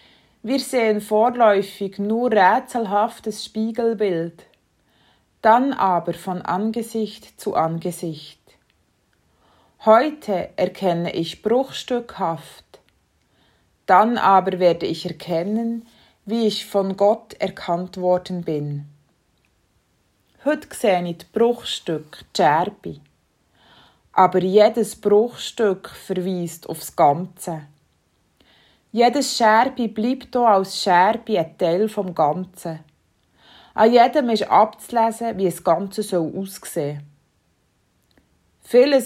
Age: 20-39